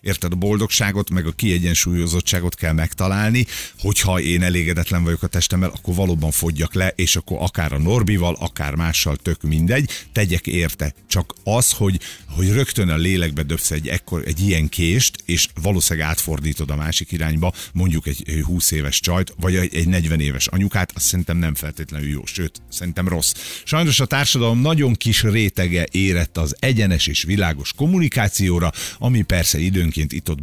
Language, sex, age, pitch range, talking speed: Hungarian, male, 50-69, 85-105 Hz, 160 wpm